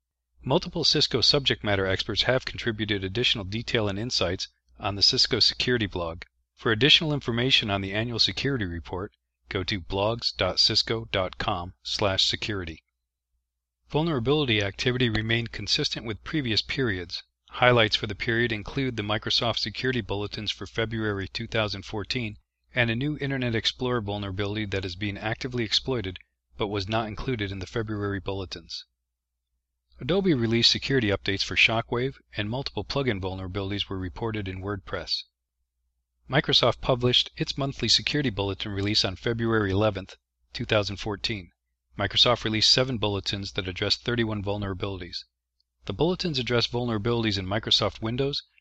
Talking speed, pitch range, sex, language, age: 130 wpm, 95-120 Hz, male, English, 40-59